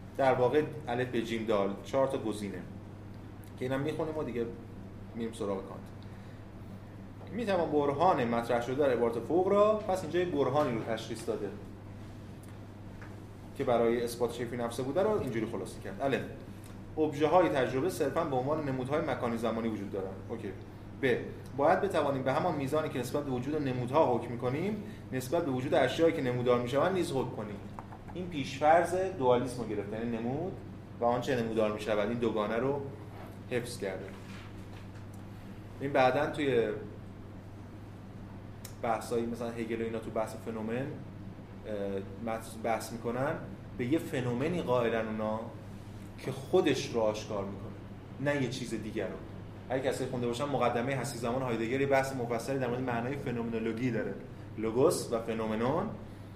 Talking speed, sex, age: 145 wpm, male, 30-49